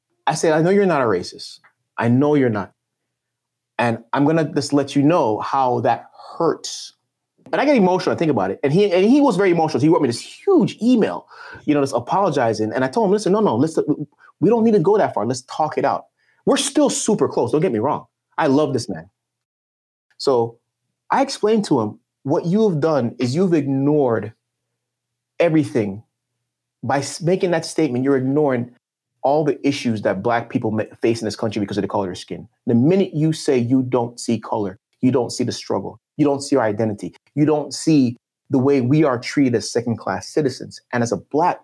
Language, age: English, 30-49